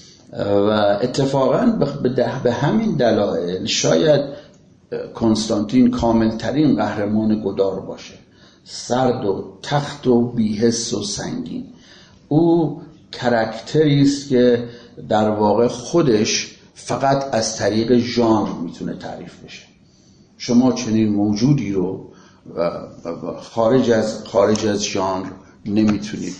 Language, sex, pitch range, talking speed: Persian, male, 110-145 Hz, 100 wpm